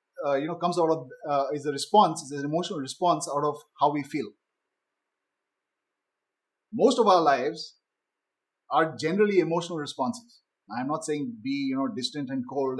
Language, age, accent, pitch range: English, 30-49, Indian, 150-205 Hz